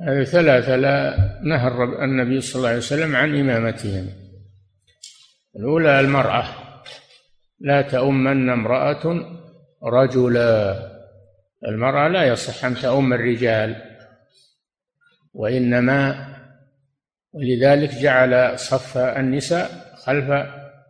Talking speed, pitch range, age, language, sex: 80 wpm, 125-145 Hz, 60-79, Arabic, male